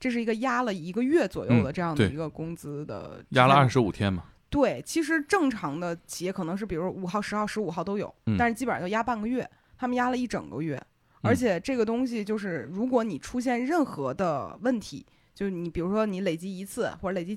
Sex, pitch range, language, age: female, 180-245 Hz, Chinese, 20-39